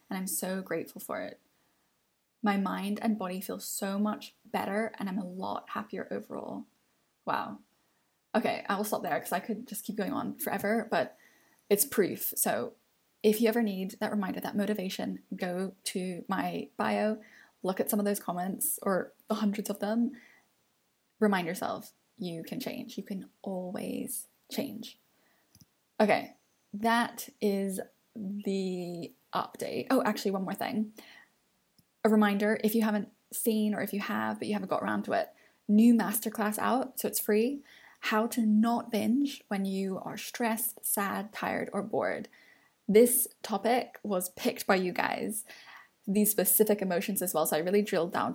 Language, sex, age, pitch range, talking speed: English, female, 10-29, 195-230 Hz, 165 wpm